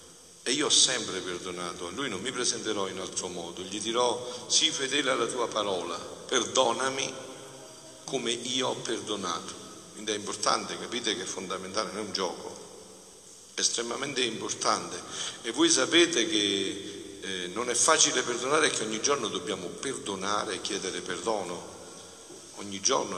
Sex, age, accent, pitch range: male, 50-69, native, 95-130 Hz